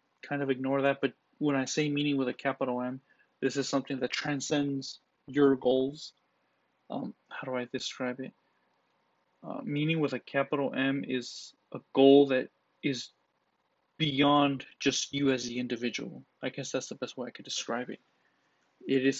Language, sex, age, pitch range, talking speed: English, male, 20-39, 130-145 Hz, 170 wpm